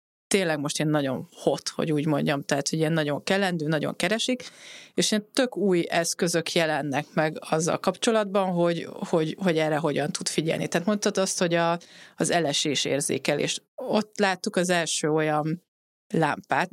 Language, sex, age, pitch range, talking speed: Hungarian, female, 30-49, 160-200 Hz, 160 wpm